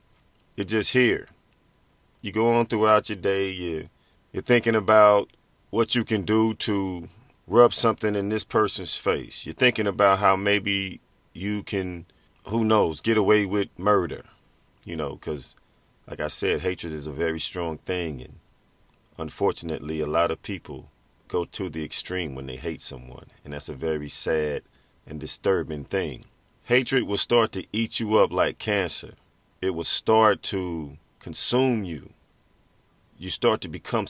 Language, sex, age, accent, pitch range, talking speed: English, male, 40-59, American, 85-110 Hz, 160 wpm